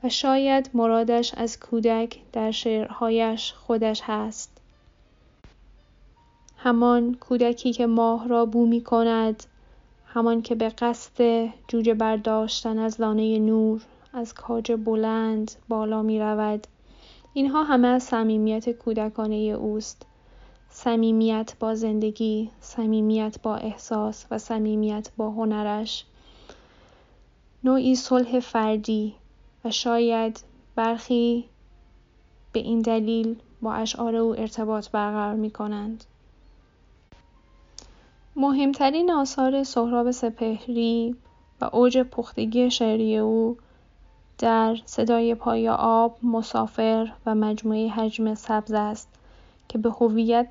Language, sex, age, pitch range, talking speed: Persian, female, 10-29, 220-235 Hz, 100 wpm